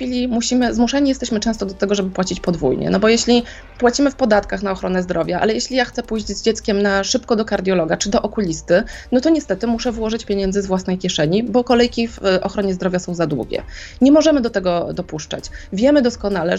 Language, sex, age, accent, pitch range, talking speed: Polish, female, 20-39, native, 195-240 Hz, 210 wpm